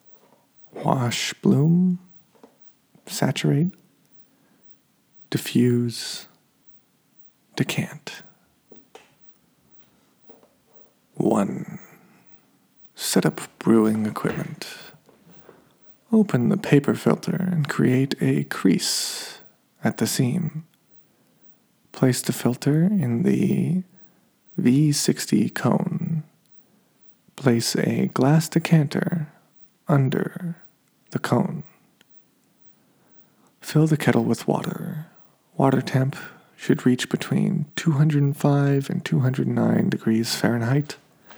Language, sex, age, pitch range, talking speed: English, male, 40-59, 135-185 Hz, 75 wpm